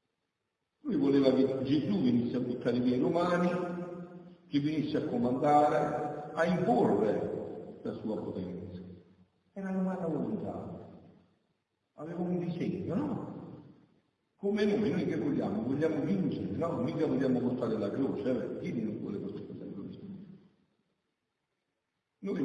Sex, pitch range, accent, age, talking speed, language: male, 130-185 Hz, native, 60-79, 125 wpm, Italian